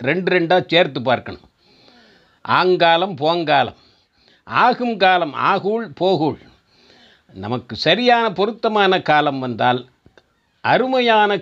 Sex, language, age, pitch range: male, Tamil, 50-69, 130-185 Hz